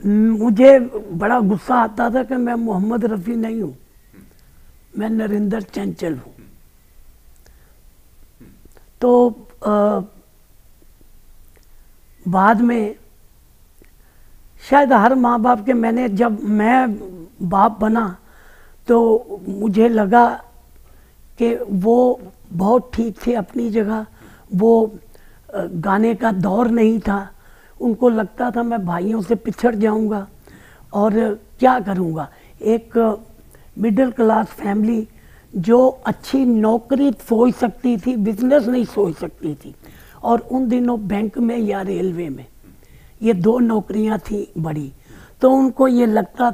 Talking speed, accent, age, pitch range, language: 115 wpm, native, 50-69, 195-240 Hz, Hindi